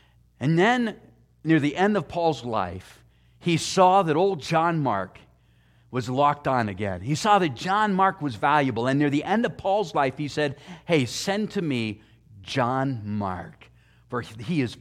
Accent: American